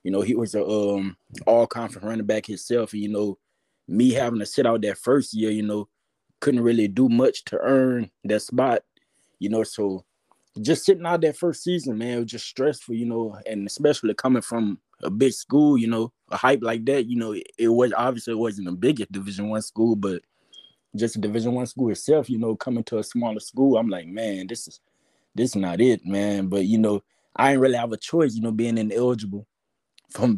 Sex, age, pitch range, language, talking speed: male, 20-39, 105-120 Hz, English, 215 wpm